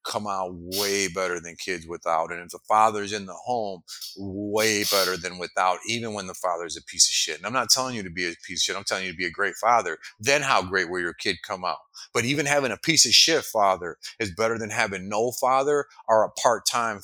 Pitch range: 110-130 Hz